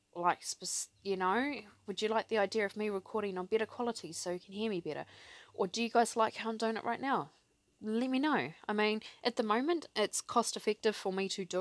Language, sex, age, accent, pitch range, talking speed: English, female, 20-39, Australian, 165-220 Hz, 240 wpm